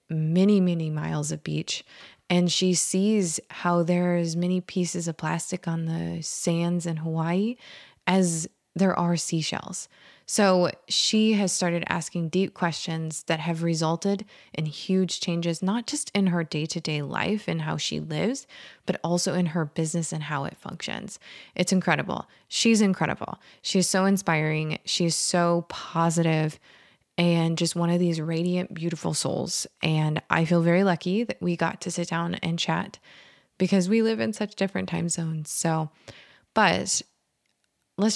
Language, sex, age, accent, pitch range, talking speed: English, female, 20-39, American, 165-195 Hz, 155 wpm